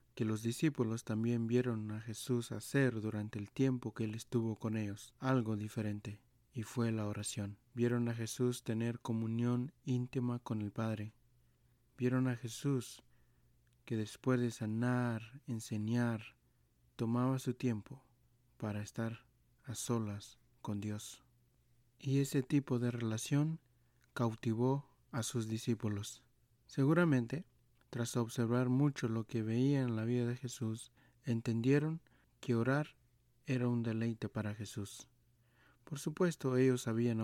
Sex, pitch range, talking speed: male, 110-125 Hz, 130 wpm